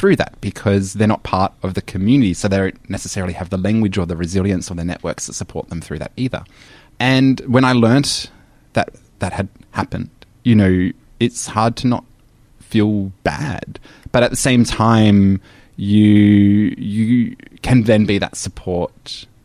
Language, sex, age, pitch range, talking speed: English, male, 20-39, 90-115 Hz, 175 wpm